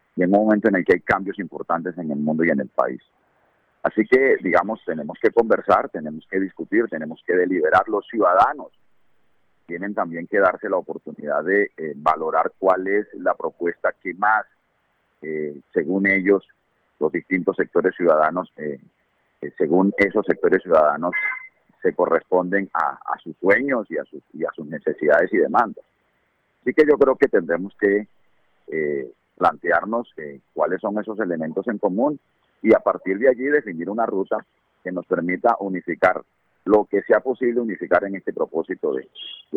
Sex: male